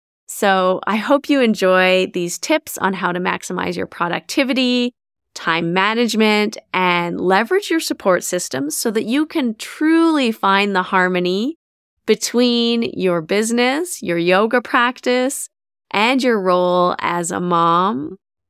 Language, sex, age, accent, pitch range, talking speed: English, female, 20-39, American, 185-230 Hz, 130 wpm